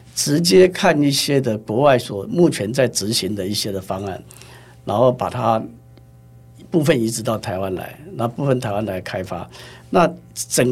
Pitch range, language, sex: 95-120 Hz, Chinese, male